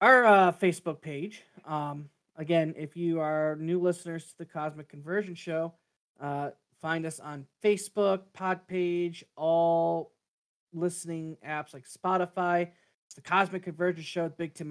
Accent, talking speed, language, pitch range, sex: American, 145 wpm, English, 150-185 Hz, male